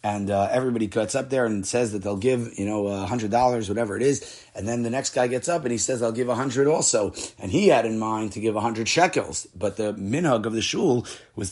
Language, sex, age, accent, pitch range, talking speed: English, male, 30-49, American, 110-130 Hz, 245 wpm